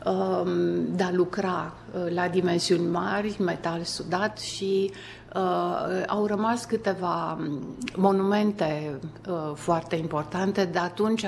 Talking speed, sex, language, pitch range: 90 wpm, female, Romanian, 175-200 Hz